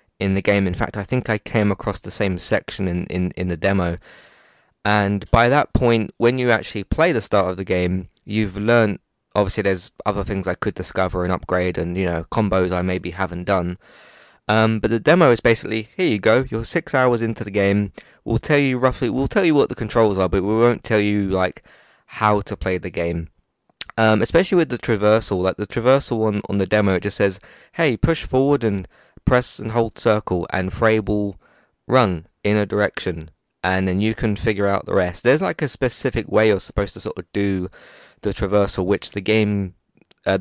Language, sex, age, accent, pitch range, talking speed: English, male, 20-39, British, 95-115 Hz, 210 wpm